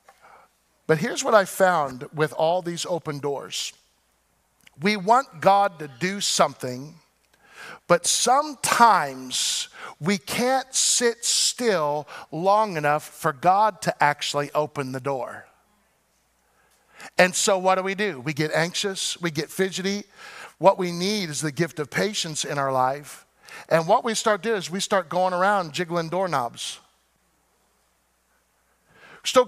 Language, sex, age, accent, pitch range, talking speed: English, male, 50-69, American, 155-210 Hz, 135 wpm